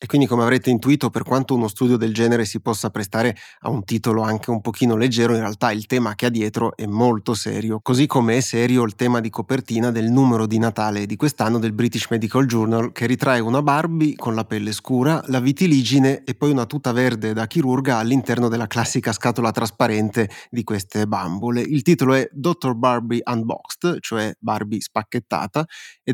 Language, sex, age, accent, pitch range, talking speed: Italian, male, 30-49, native, 115-135 Hz, 195 wpm